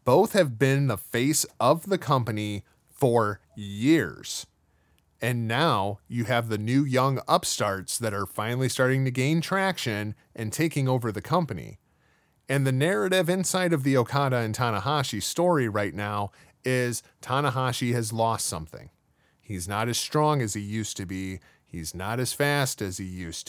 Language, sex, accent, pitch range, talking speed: English, male, American, 110-160 Hz, 160 wpm